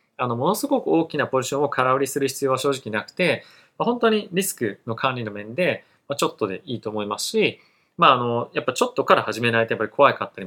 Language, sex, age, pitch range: Japanese, male, 20-39, 110-155 Hz